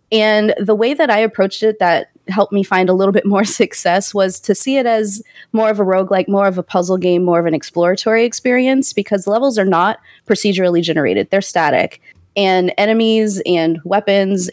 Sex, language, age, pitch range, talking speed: female, English, 20-39, 170-205 Hz, 195 wpm